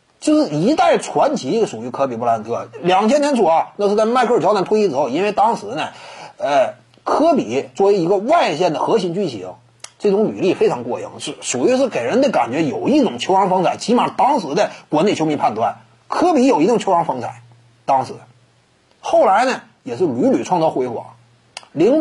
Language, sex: Chinese, male